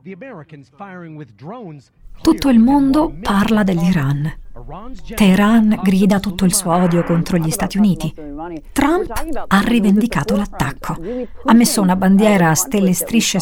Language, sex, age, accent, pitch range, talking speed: Italian, female, 50-69, native, 160-210 Hz, 120 wpm